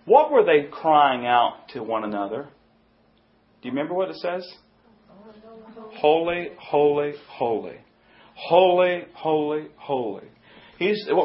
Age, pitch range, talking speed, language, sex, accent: 40-59, 140-205 Hz, 115 wpm, English, male, American